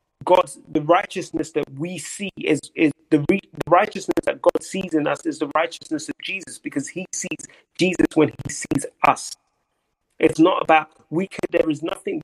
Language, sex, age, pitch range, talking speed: English, male, 30-49, 145-170 Hz, 185 wpm